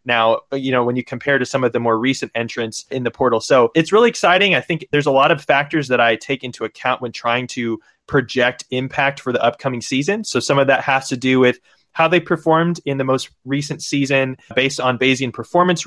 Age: 20-39